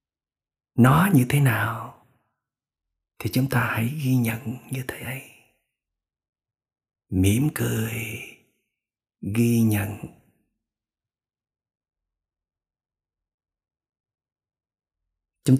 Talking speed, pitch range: 70 wpm, 105-130 Hz